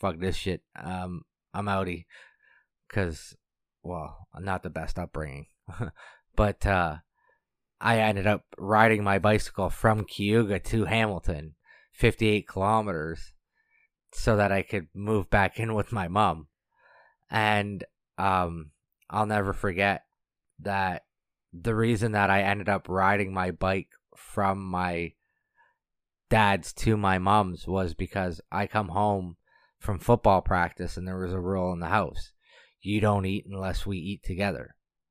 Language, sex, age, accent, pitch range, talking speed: English, male, 20-39, American, 90-105 Hz, 140 wpm